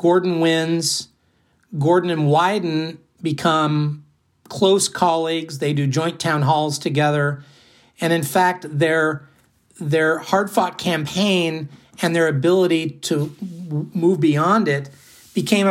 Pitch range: 125-165 Hz